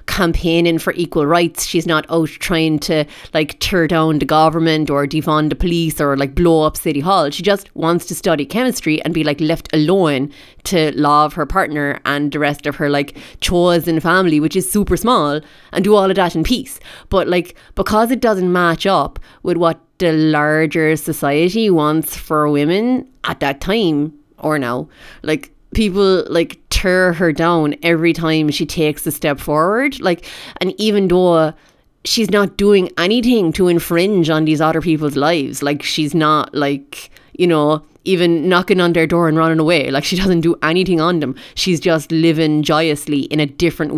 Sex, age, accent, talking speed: female, 30-49, Irish, 185 wpm